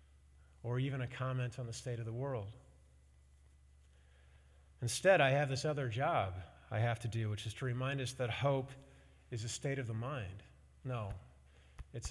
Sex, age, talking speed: male, 40-59, 175 wpm